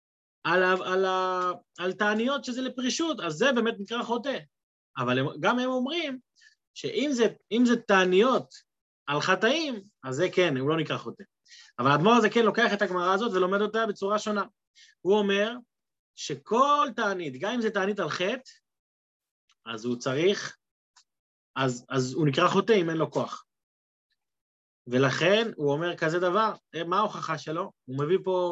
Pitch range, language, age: 165-235 Hz, Hebrew, 30-49